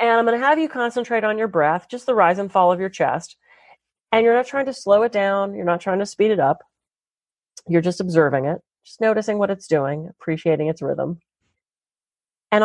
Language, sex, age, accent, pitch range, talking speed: English, female, 30-49, American, 155-220 Hz, 220 wpm